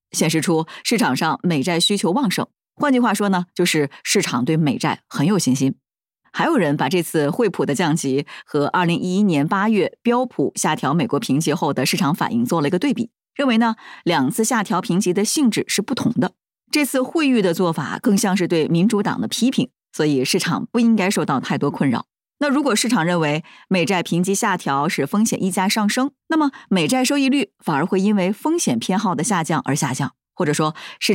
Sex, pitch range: female, 160-240 Hz